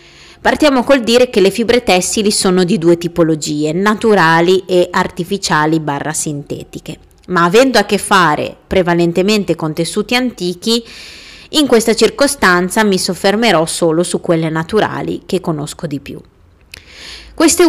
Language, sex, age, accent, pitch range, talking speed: Italian, female, 30-49, native, 165-240 Hz, 130 wpm